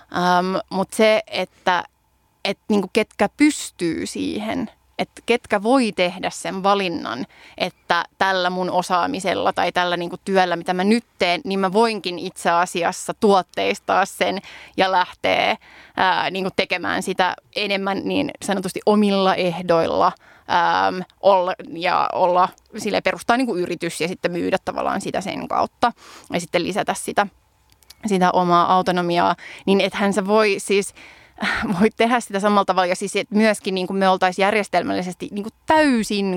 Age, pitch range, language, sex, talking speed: 20-39, 185-215 Hz, Finnish, female, 125 wpm